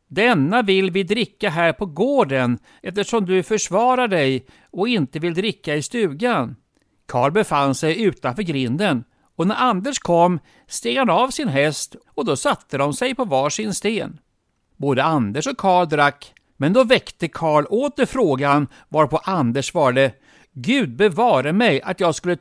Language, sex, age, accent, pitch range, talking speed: Swedish, male, 60-79, native, 140-210 Hz, 160 wpm